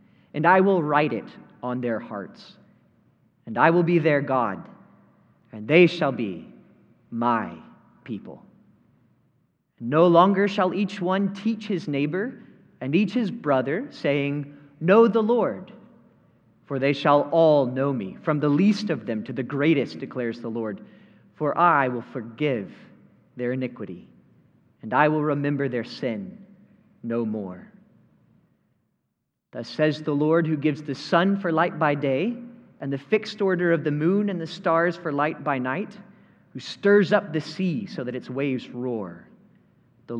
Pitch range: 130-190 Hz